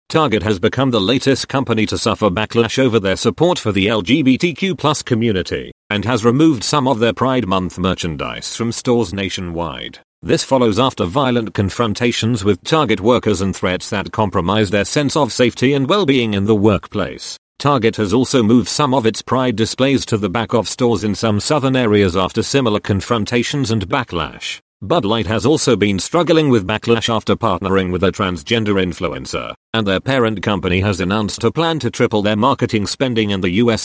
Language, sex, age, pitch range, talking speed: English, male, 40-59, 100-125 Hz, 185 wpm